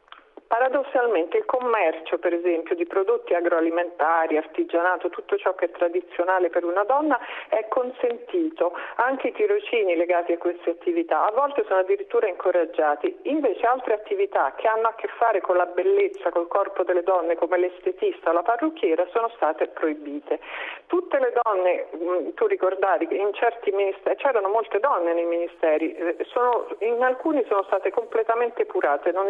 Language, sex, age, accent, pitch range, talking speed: Italian, female, 40-59, native, 175-265 Hz, 155 wpm